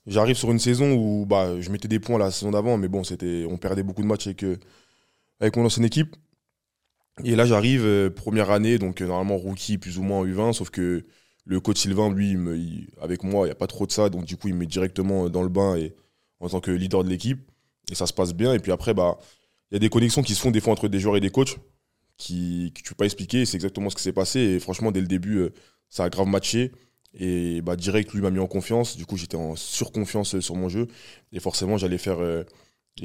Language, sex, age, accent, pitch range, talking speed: French, male, 20-39, French, 95-110 Hz, 260 wpm